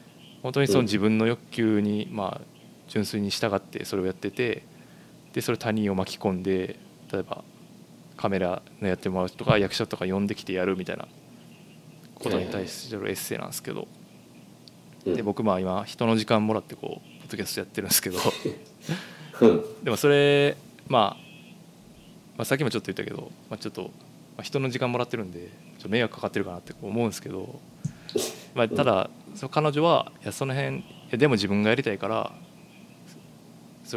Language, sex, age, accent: Japanese, male, 20-39, native